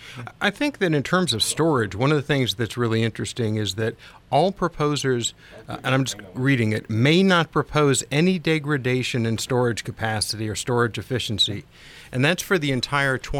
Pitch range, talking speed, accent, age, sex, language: 110-140 Hz, 180 wpm, American, 50-69, male, English